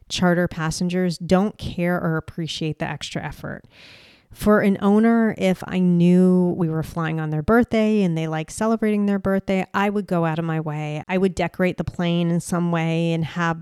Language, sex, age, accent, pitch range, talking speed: English, female, 30-49, American, 165-185 Hz, 195 wpm